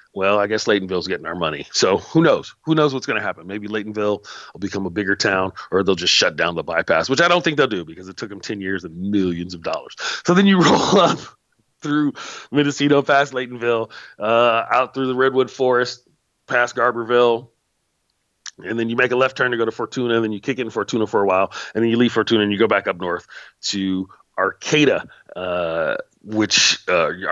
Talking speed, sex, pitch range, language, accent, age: 215 wpm, male, 105-140 Hz, English, American, 40-59